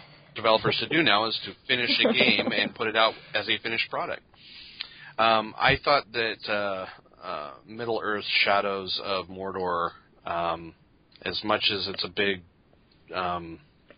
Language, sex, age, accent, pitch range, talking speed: English, male, 30-49, American, 90-110 Hz, 155 wpm